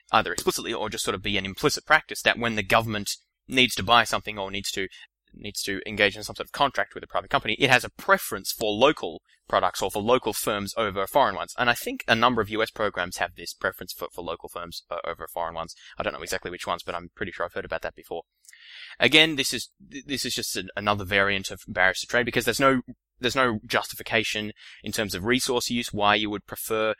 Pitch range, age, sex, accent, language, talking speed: 100-120 Hz, 20-39, male, Australian, English, 240 wpm